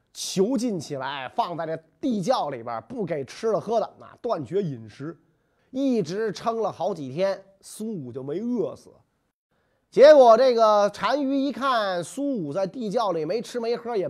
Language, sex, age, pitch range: Chinese, male, 30-49, 145-235 Hz